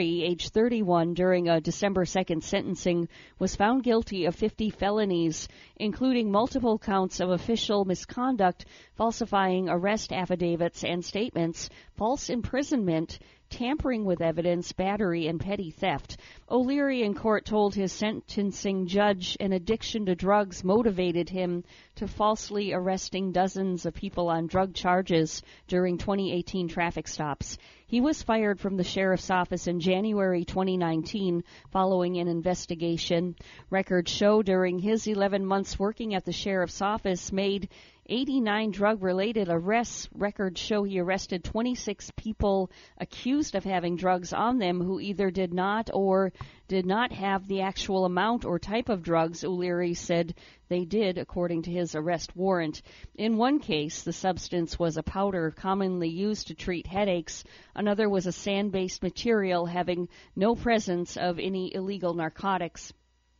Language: English